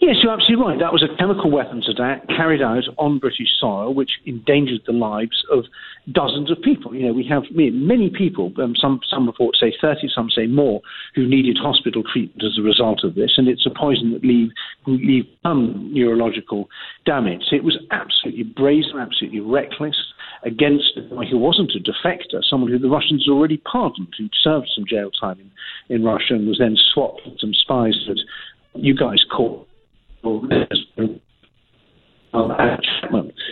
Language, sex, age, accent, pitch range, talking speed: English, male, 50-69, British, 115-145 Hz, 170 wpm